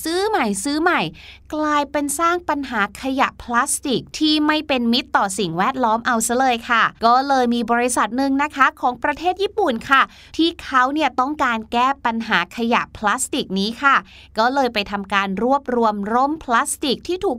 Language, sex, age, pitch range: Thai, female, 20-39, 225-300 Hz